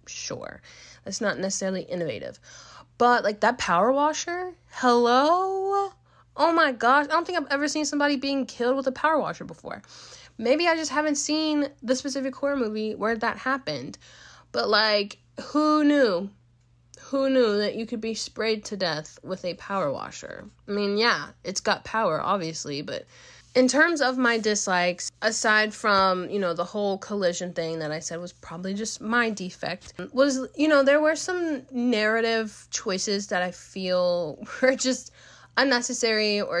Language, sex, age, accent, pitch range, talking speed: English, female, 20-39, American, 185-270 Hz, 165 wpm